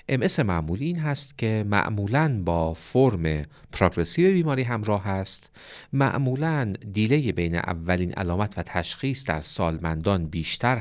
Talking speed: 115 wpm